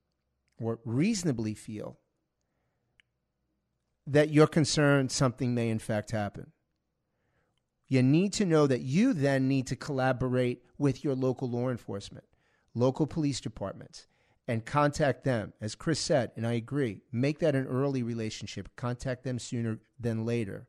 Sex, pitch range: male, 115-145 Hz